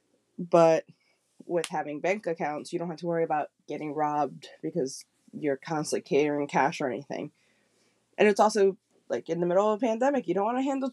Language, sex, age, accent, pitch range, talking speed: English, female, 20-39, American, 160-185 Hz, 190 wpm